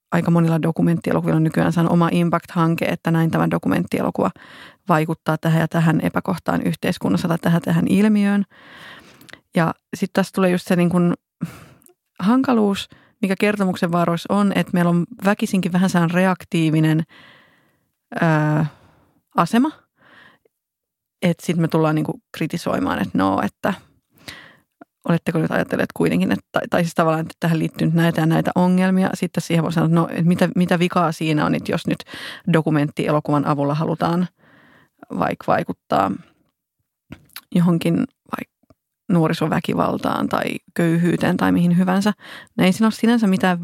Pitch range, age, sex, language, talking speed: 165-190 Hz, 30-49, female, Finnish, 140 wpm